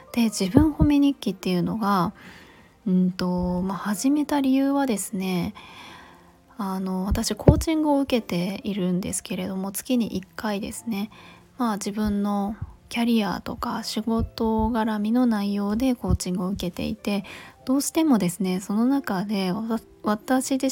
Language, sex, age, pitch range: Japanese, female, 20-39, 185-235 Hz